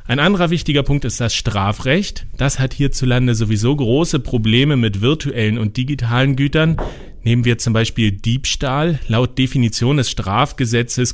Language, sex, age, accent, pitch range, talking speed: German, male, 40-59, German, 110-140 Hz, 145 wpm